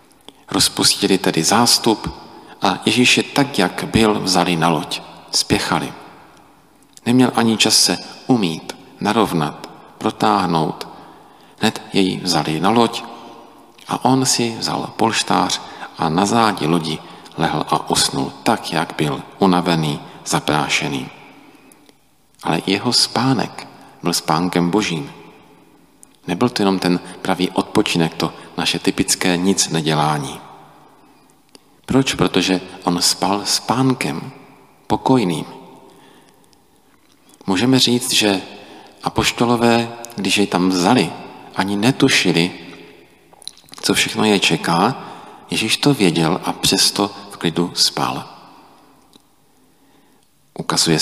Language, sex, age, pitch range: Czech, male, 40-59, 90-115 Hz